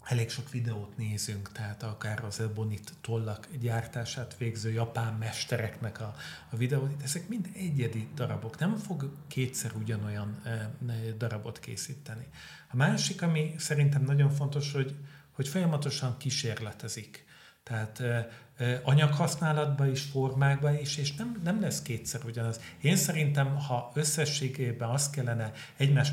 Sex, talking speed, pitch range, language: male, 120 wpm, 115-145 Hz, Hungarian